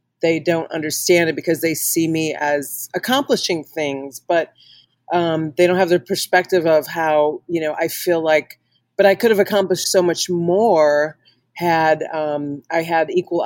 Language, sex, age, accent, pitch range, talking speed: English, female, 40-59, American, 145-175 Hz, 170 wpm